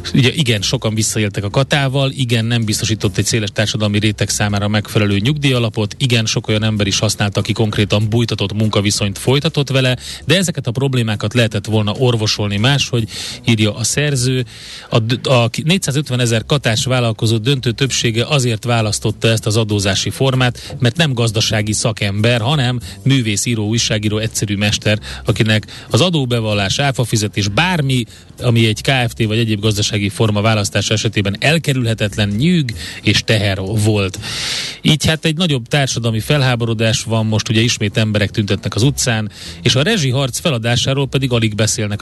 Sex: male